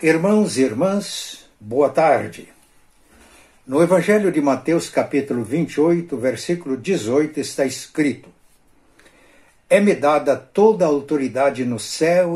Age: 60-79